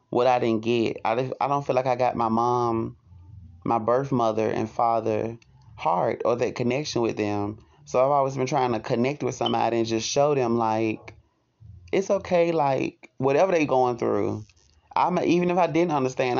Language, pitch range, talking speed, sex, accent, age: English, 115-135 Hz, 185 wpm, male, American, 20-39